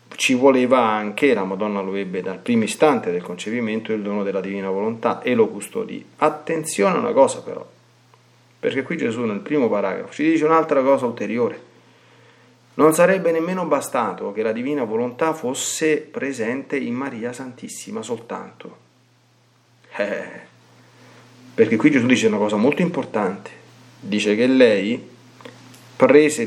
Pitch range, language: 110-160 Hz, Italian